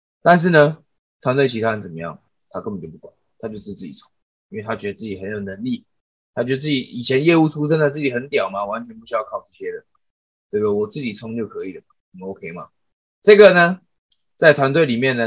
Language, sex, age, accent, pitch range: Chinese, male, 20-39, native, 110-165 Hz